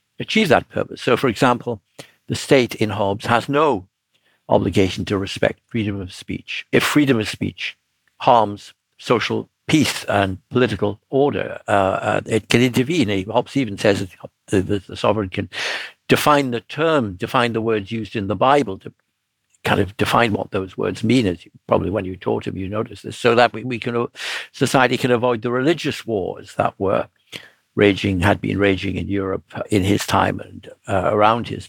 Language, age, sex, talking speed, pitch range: English, 60-79, male, 185 wpm, 100-125 Hz